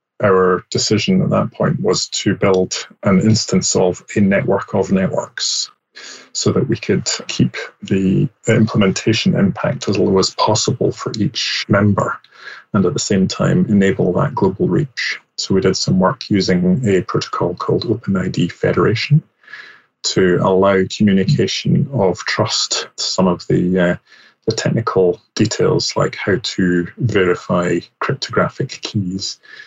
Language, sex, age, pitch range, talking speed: English, male, 30-49, 95-110 Hz, 140 wpm